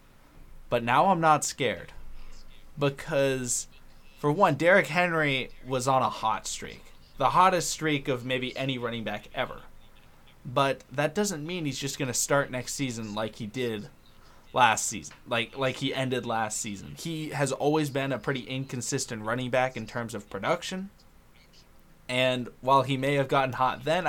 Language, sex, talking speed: English, male, 165 wpm